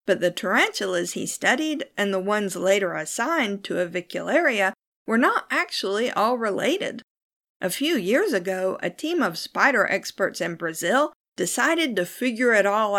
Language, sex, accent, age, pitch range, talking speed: English, female, American, 50-69, 185-270 Hz, 150 wpm